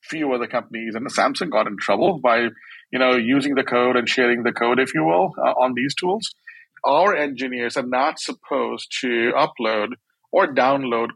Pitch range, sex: 120-165 Hz, male